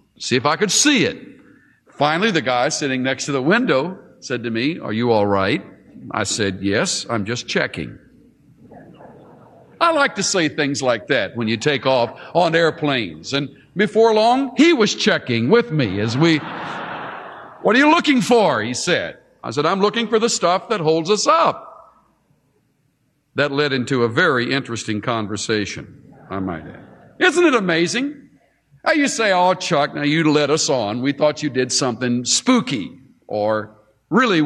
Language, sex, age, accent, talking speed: English, male, 60-79, American, 170 wpm